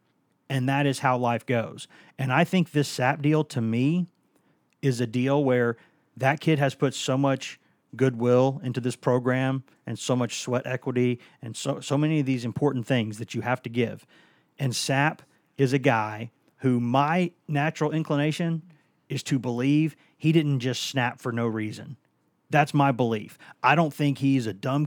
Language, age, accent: English, 40-59, American